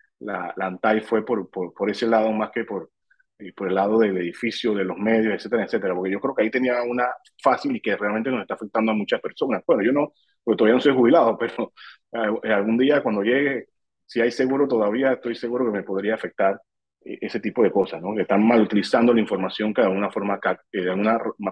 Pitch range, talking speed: 100-120 Hz, 225 wpm